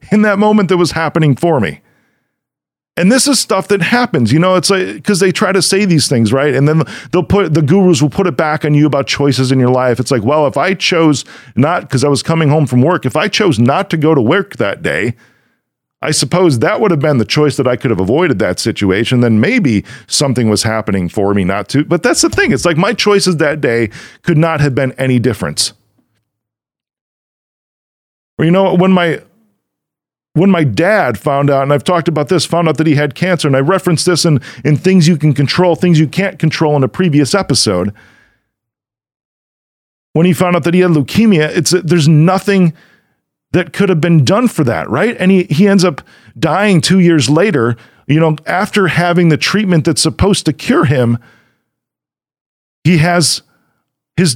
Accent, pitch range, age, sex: American, 135-185 Hz, 40-59, male